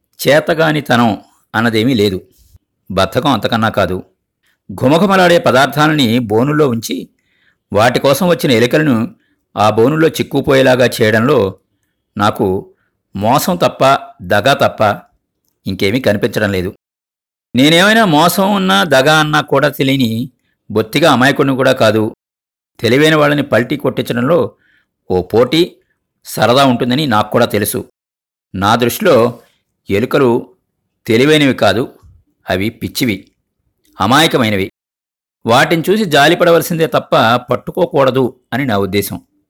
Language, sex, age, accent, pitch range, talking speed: Telugu, male, 50-69, native, 100-150 Hz, 95 wpm